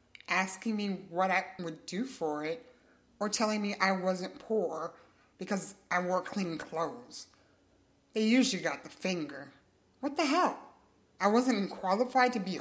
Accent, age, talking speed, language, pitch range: American, 30-49, 150 wpm, English, 165-210 Hz